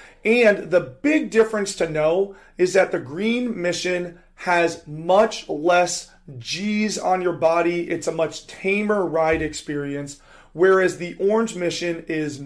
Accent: American